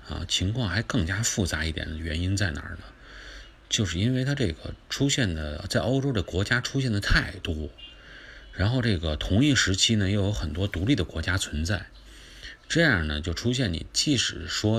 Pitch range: 85-110 Hz